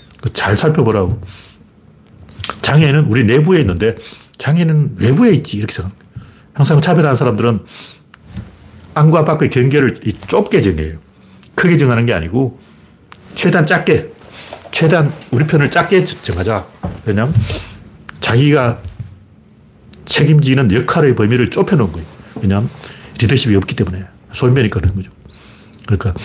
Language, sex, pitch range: Korean, male, 105-150 Hz